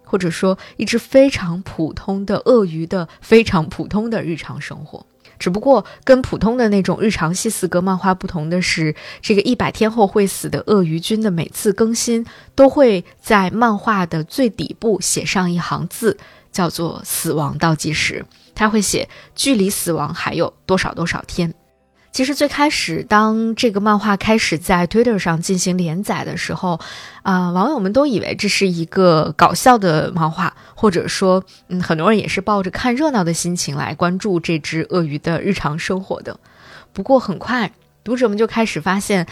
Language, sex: Chinese, female